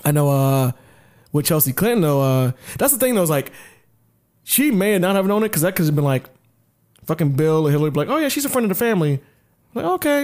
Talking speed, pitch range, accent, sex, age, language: 250 wpm, 135-180 Hz, American, male, 20-39, English